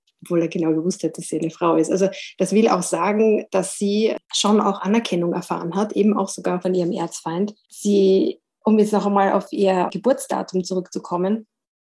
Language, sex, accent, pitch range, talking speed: German, female, German, 180-205 Hz, 190 wpm